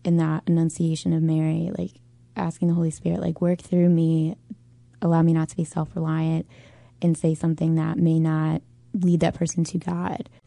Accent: American